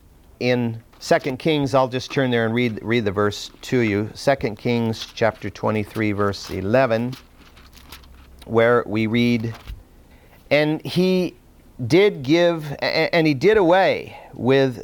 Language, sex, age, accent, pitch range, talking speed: English, male, 50-69, American, 115-160 Hz, 130 wpm